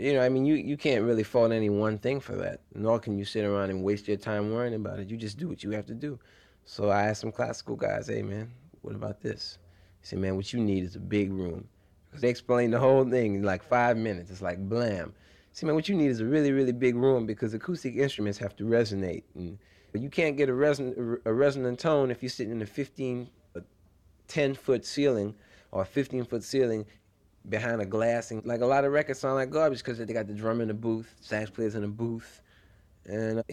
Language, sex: English, male